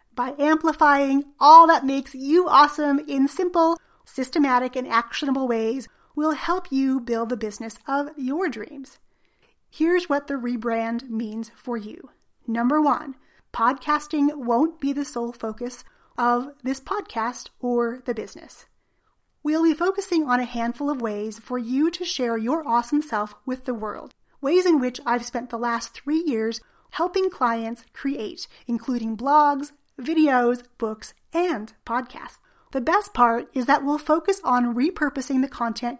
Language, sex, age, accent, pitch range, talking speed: English, female, 30-49, American, 240-300 Hz, 150 wpm